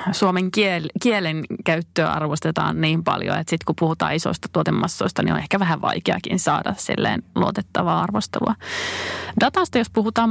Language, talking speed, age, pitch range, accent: Finnish, 145 wpm, 30-49, 165-190 Hz, native